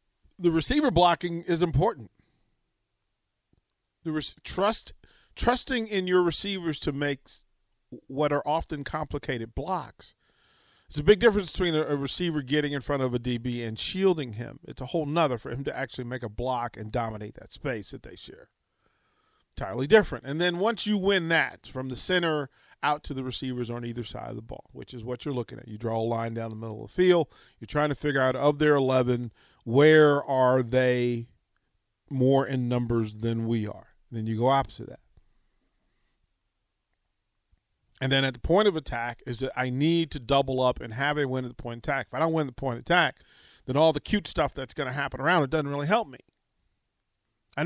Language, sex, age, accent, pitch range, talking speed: English, male, 40-59, American, 120-160 Hz, 200 wpm